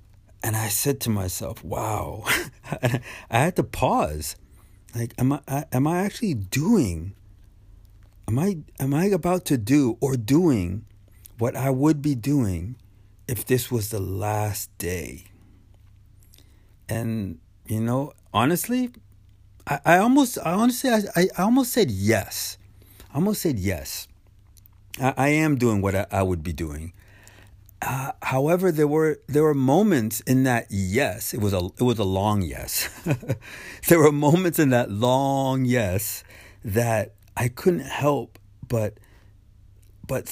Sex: male